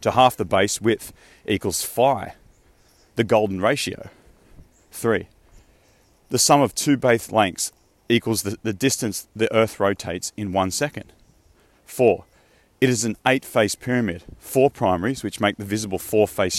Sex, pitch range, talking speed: male, 95-120 Hz, 145 wpm